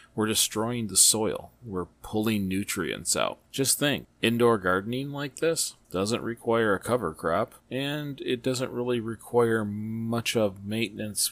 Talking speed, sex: 145 wpm, male